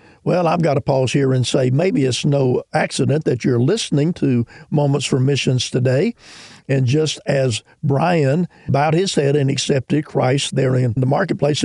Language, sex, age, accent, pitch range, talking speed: English, male, 50-69, American, 130-155 Hz, 175 wpm